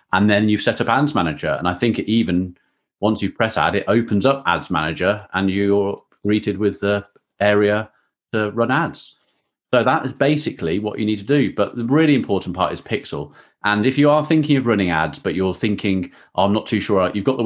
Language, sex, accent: English, male, British